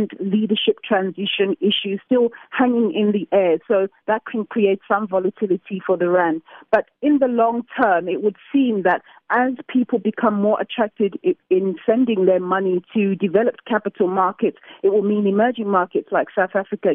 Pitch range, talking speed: 180-215 Hz, 165 wpm